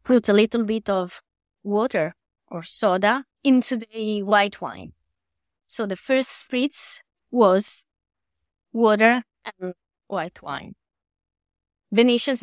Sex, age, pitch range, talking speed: female, 20-39, 185-235 Hz, 105 wpm